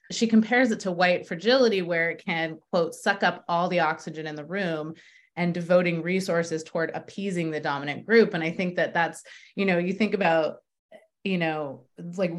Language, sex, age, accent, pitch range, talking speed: English, female, 30-49, American, 170-220 Hz, 190 wpm